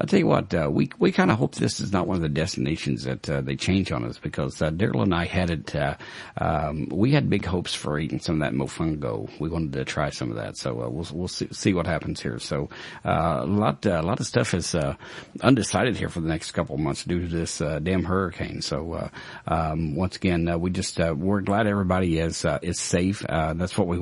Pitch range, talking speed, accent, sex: 80-100 Hz, 255 wpm, American, male